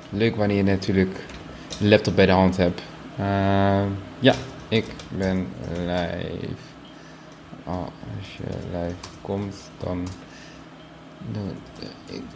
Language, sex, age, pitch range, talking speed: Dutch, male, 20-39, 105-135 Hz, 110 wpm